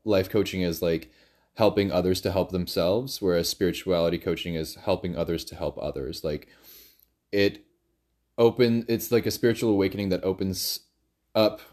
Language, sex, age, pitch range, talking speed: English, male, 20-39, 85-105 Hz, 150 wpm